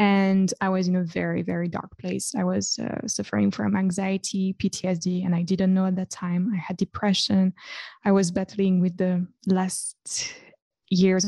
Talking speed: 175 wpm